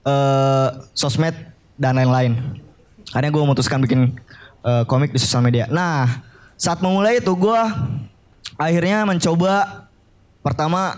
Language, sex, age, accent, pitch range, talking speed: Indonesian, male, 20-39, native, 130-170 Hz, 120 wpm